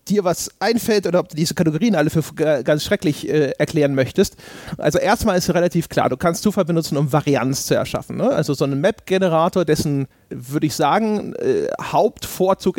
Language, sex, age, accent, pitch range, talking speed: German, male, 30-49, German, 140-190 Hz, 185 wpm